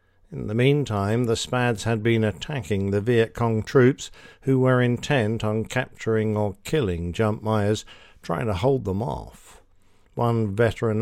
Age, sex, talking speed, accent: 50-69, male, 150 wpm, British